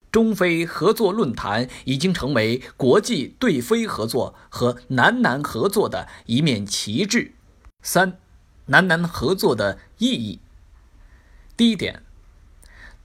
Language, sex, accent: Chinese, male, native